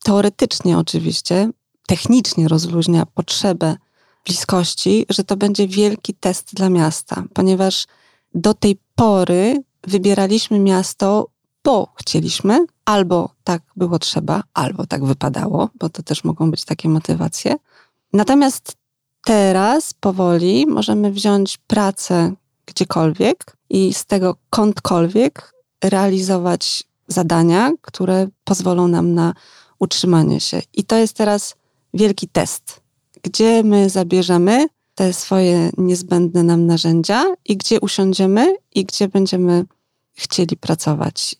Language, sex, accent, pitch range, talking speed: Polish, female, native, 175-205 Hz, 110 wpm